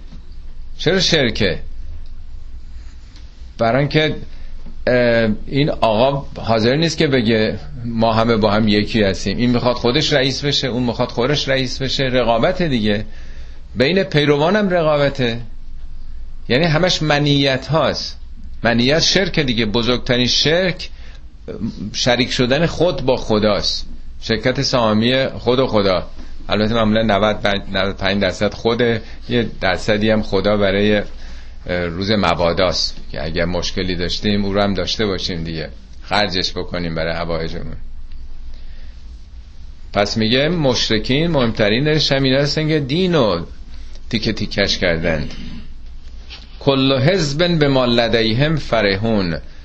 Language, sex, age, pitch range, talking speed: Persian, male, 40-59, 75-130 Hz, 110 wpm